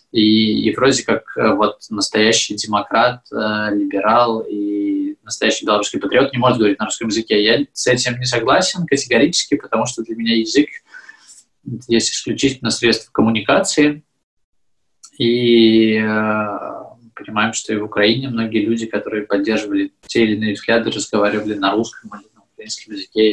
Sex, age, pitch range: male, 20-39, 105-125 Hz